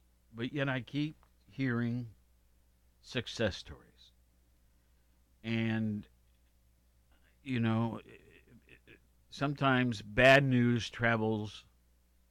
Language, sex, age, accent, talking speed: English, male, 60-79, American, 70 wpm